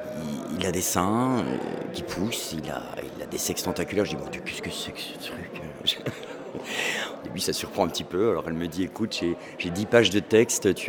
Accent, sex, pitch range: French, male, 85-105 Hz